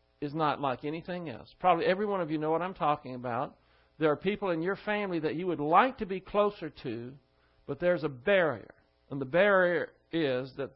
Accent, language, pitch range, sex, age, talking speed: American, English, 145-190 Hz, male, 50-69, 210 wpm